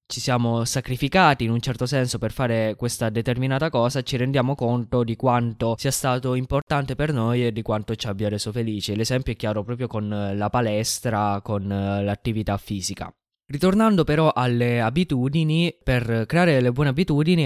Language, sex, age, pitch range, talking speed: Italian, male, 20-39, 115-140 Hz, 165 wpm